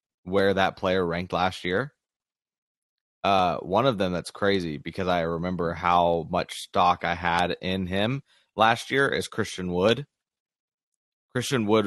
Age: 20-39